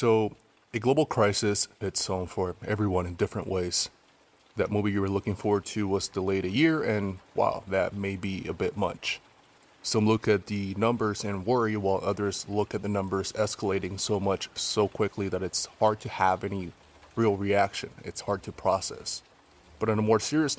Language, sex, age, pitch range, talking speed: English, male, 20-39, 90-105 Hz, 190 wpm